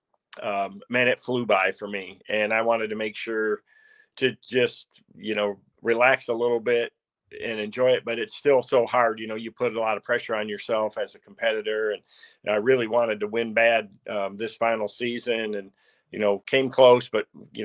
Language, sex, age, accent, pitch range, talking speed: English, male, 40-59, American, 105-125 Hz, 205 wpm